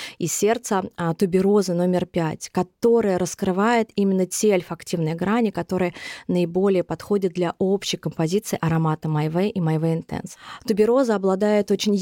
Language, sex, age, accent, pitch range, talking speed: Russian, female, 20-39, native, 170-205 Hz, 130 wpm